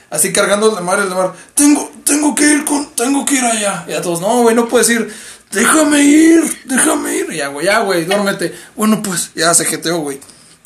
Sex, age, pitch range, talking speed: male, 20-39, 170-225 Hz, 225 wpm